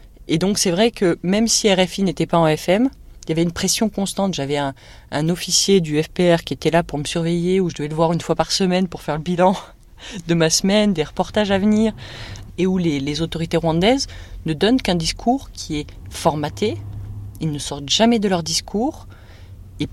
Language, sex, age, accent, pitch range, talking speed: French, female, 30-49, French, 150-195 Hz, 215 wpm